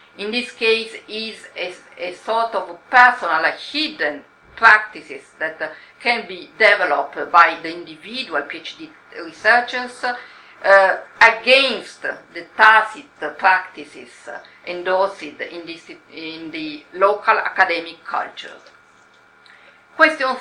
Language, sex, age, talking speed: English, female, 50-69, 105 wpm